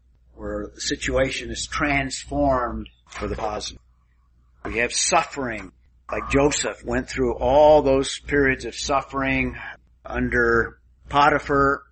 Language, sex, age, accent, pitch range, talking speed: English, male, 50-69, American, 110-140 Hz, 110 wpm